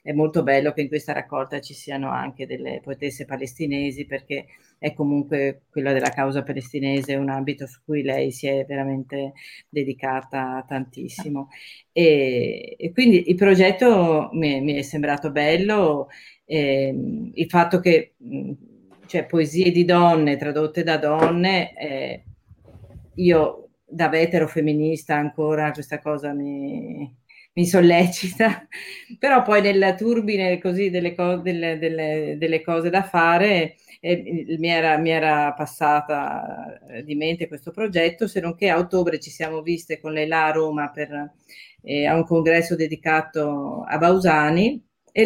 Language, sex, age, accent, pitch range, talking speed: Italian, female, 40-59, native, 145-175 Hz, 145 wpm